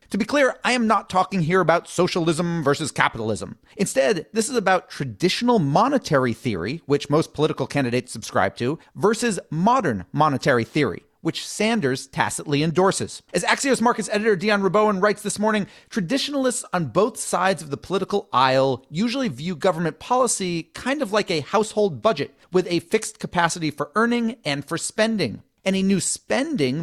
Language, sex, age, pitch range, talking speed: English, male, 30-49, 150-215 Hz, 160 wpm